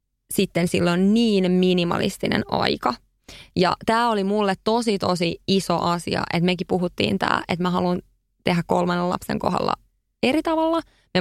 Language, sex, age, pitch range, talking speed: Finnish, female, 20-39, 170-200 Hz, 145 wpm